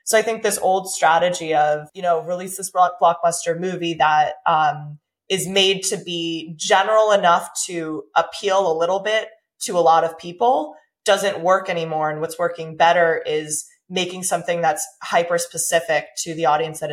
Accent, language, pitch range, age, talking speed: American, English, 160-190 Hz, 20-39, 170 wpm